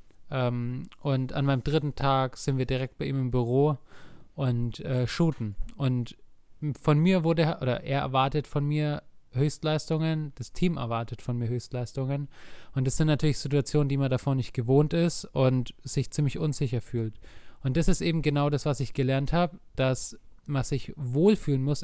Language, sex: German, male